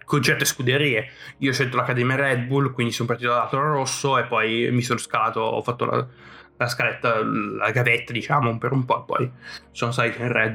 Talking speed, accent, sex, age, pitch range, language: 210 wpm, native, male, 20-39, 120-140 Hz, Italian